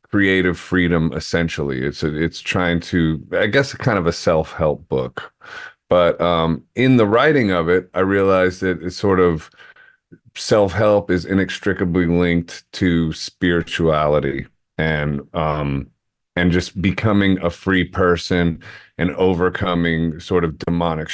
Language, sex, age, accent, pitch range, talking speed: English, male, 30-49, American, 85-100 Hz, 130 wpm